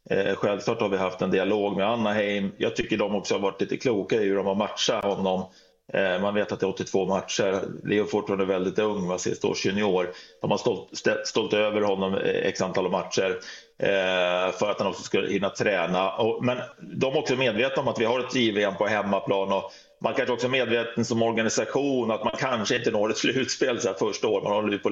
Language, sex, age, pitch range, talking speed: English, male, 30-49, 95-115 Hz, 210 wpm